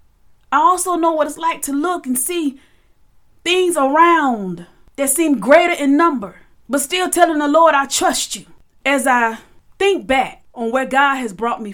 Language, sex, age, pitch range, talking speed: English, female, 30-49, 245-315 Hz, 180 wpm